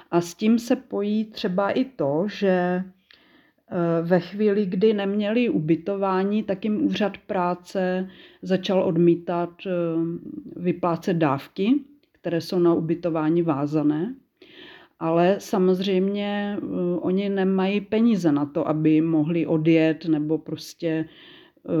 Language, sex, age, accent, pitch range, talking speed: Czech, female, 40-59, native, 170-205 Hz, 105 wpm